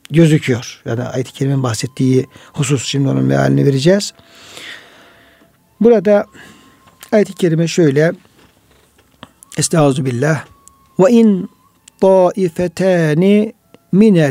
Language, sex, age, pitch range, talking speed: Turkish, male, 60-79, 145-190 Hz, 80 wpm